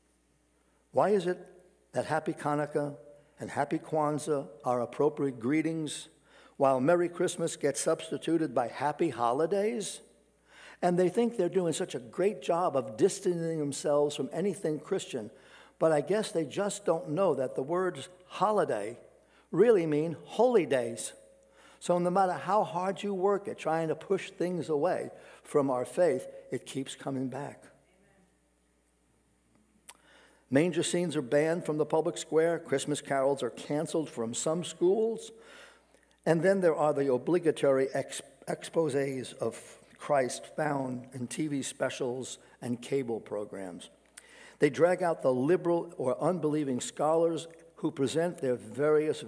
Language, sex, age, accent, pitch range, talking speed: English, male, 60-79, American, 140-180 Hz, 140 wpm